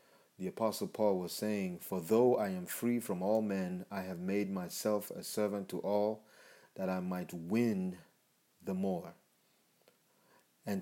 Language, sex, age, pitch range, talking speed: English, male, 30-49, 95-110 Hz, 155 wpm